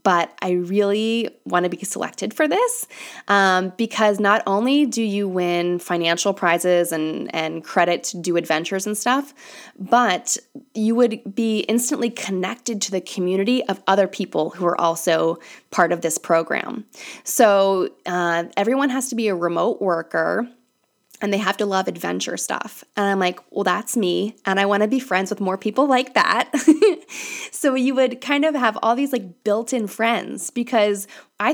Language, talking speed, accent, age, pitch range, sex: English, 175 wpm, American, 20-39, 180-230 Hz, female